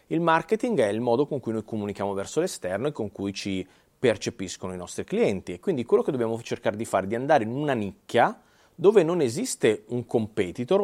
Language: Italian